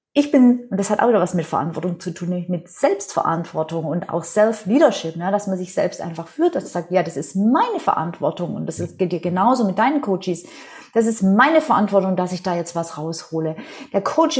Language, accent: German, German